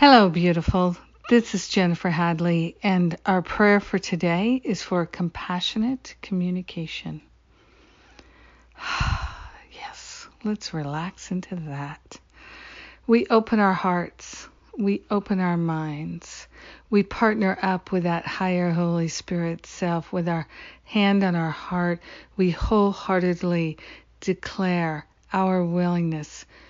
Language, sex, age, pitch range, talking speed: English, female, 50-69, 170-200 Hz, 110 wpm